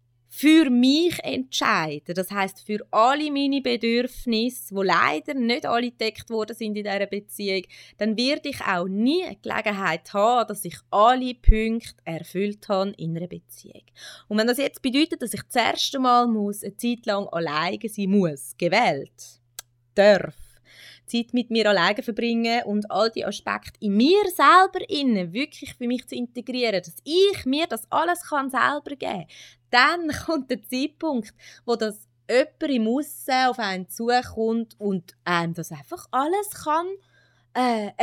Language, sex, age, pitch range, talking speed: German, female, 20-39, 200-275 Hz, 160 wpm